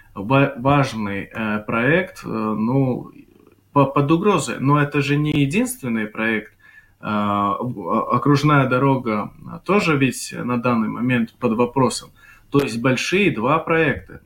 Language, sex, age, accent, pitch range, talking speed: Russian, male, 20-39, native, 110-135 Hz, 105 wpm